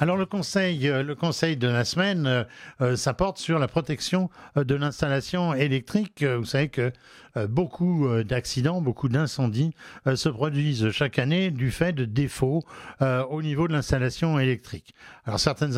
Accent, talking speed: French, 150 wpm